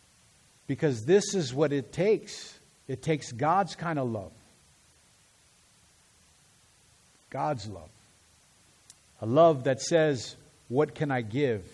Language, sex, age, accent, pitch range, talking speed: English, male, 50-69, American, 125-170 Hz, 110 wpm